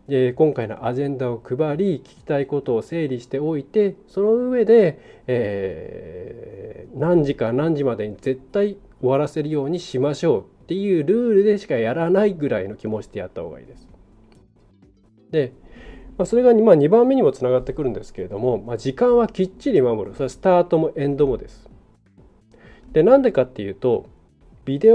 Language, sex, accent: Japanese, male, native